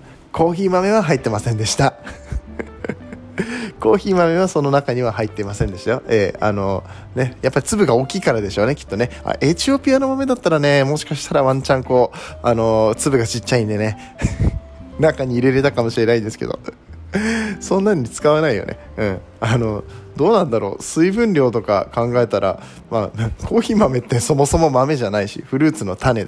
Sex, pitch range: male, 105-150 Hz